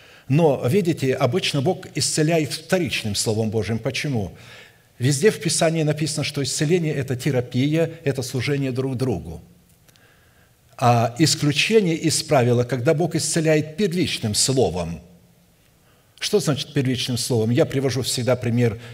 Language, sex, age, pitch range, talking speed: Russian, male, 50-69, 120-155 Hz, 125 wpm